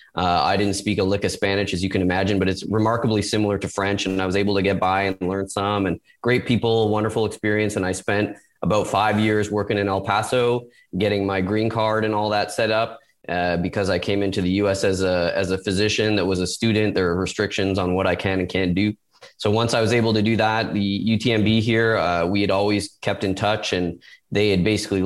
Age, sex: 20-39, male